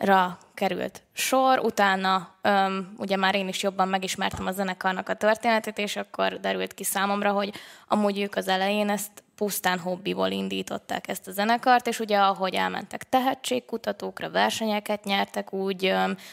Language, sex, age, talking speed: Hungarian, female, 20-39, 150 wpm